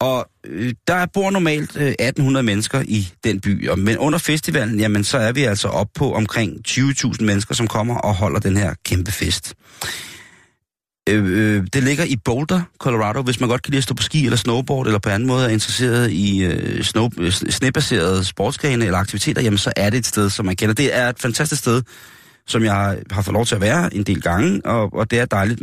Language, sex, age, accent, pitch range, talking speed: Danish, male, 30-49, native, 105-130 Hz, 205 wpm